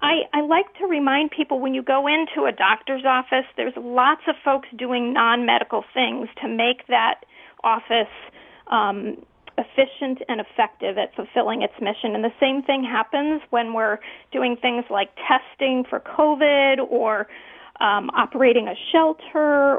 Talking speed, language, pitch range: 150 wpm, English, 240-285 Hz